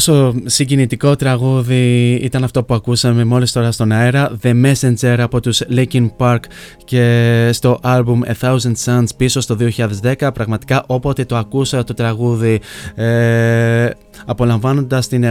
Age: 20-39